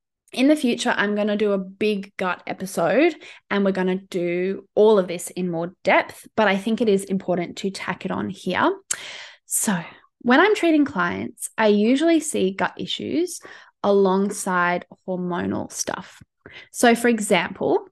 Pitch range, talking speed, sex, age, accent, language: 195-250 Hz, 165 wpm, female, 10-29, Australian, English